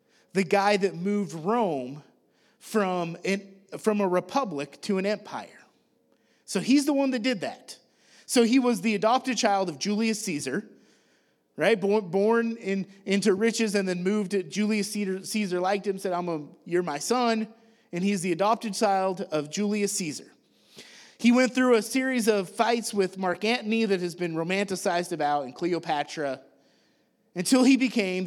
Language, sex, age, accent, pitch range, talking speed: English, male, 30-49, American, 160-220 Hz, 155 wpm